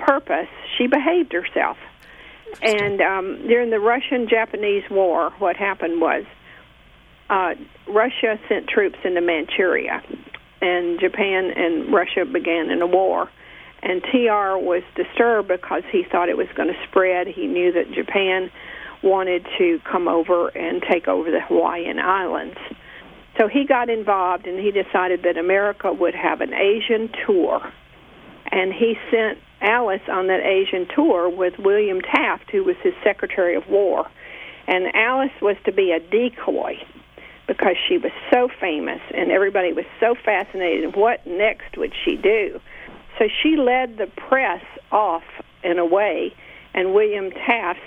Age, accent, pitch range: 50-69, American, 185-245 Hz